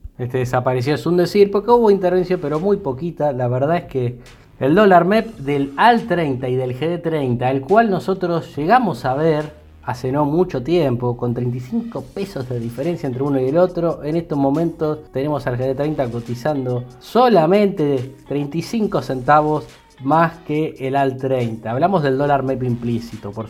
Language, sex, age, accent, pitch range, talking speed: Spanish, male, 20-39, Argentinian, 125-165 Hz, 165 wpm